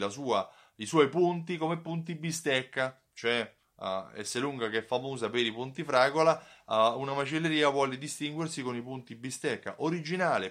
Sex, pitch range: male, 110-150 Hz